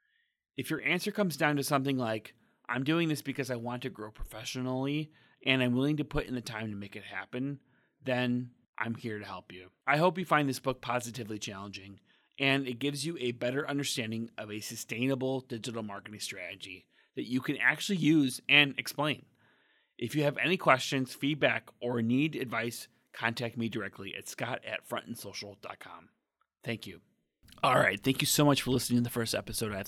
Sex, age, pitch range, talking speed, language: male, 30-49, 105-135 Hz, 190 wpm, English